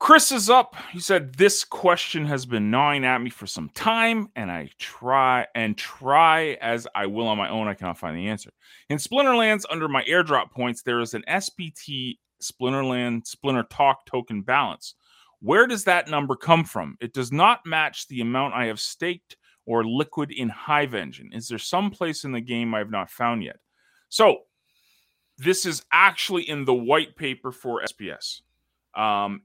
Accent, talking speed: American, 180 wpm